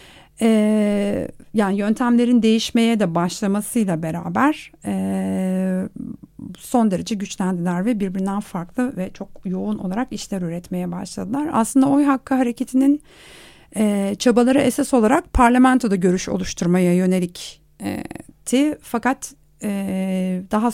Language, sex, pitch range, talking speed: Turkish, female, 185-235 Hz, 95 wpm